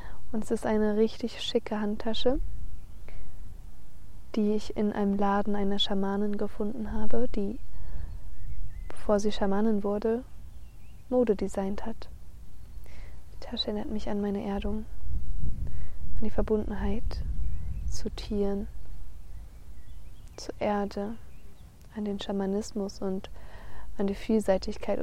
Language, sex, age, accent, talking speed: German, female, 20-39, German, 110 wpm